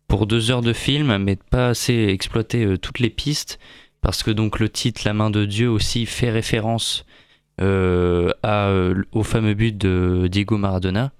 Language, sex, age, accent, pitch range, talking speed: French, male, 20-39, French, 100-115 Hz, 175 wpm